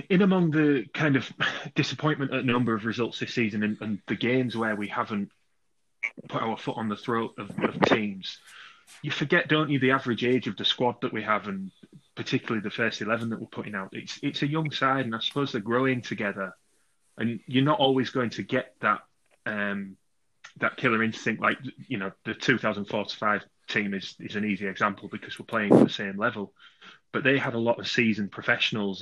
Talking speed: 210 wpm